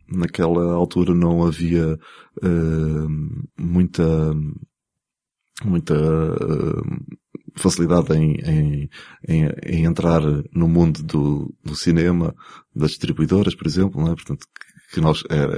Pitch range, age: 75-90 Hz, 20-39